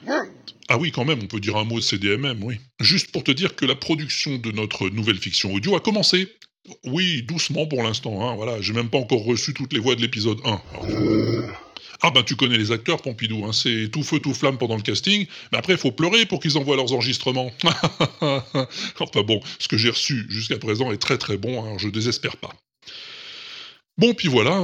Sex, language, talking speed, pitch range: female, French, 215 wpm, 110-155 Hz